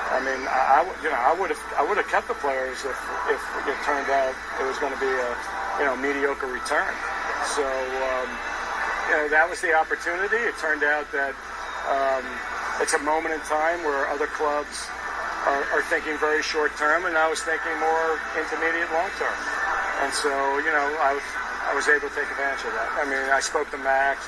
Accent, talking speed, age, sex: American, 210 wpm, 50-69, male